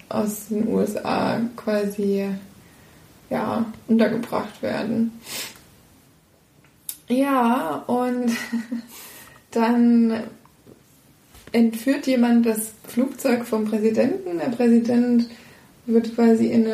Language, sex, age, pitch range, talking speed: German, female, 20-39, 220-240 Hz, 80 wpm